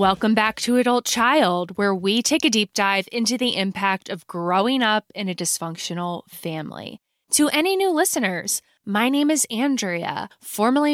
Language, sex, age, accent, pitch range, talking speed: English, female, 20-39, American, 185-260 Hz, 165 wpm